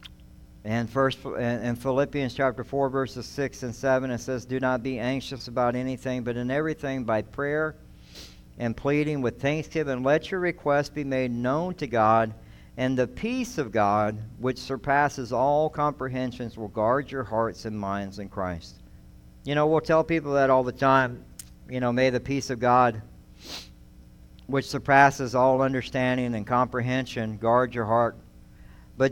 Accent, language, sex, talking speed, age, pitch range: American, English, male, 160 wpm, 60-79, 115-145 Hz